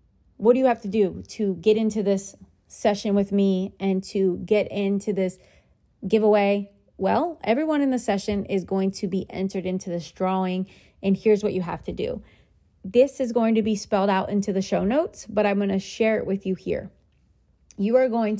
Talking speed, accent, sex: 200 wpm, American, female